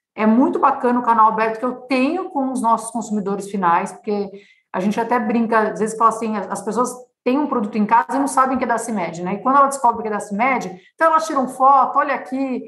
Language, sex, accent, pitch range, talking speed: Portuguese, female, Brazilian, 210-265 Hz, 250 wpm